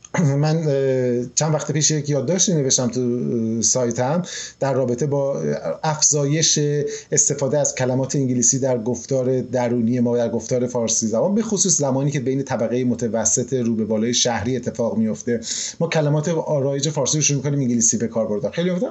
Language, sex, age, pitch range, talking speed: Persian, male, 30-49, 125-175 Hz, 160 wpm